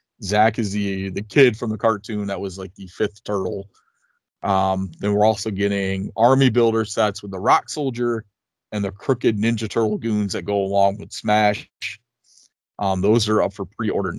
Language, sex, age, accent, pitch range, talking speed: English, male, 30-49, American, 95-115 Hz, 180 wpm